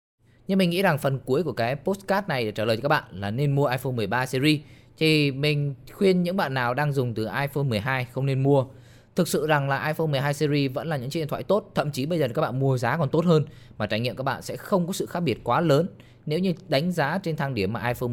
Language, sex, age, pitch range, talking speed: Vietnamese, male, 20-39, 115-155 Hz, 275 wpm